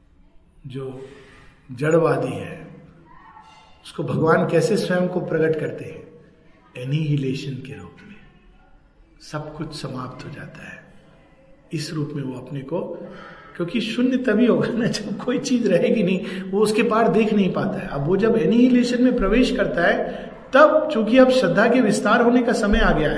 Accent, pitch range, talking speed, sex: native, 155-225 Hz, 165 wpm, male